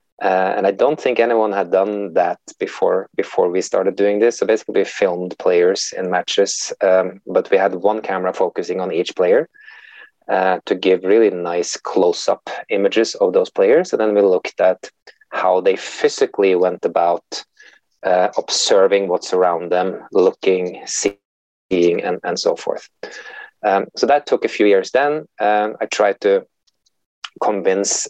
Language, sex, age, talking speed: English, male, 20-39, 160 wpm